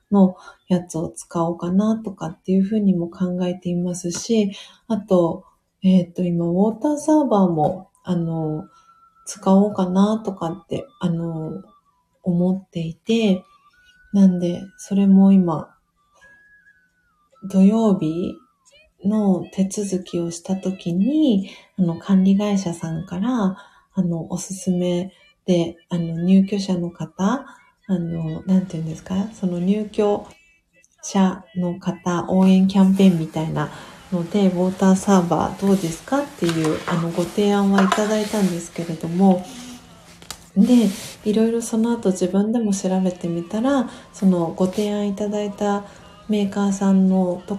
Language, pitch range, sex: Japanese, 175-205 Hz, female